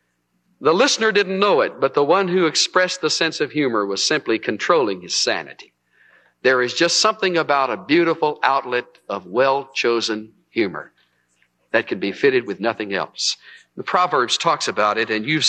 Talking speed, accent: 170 wpm, American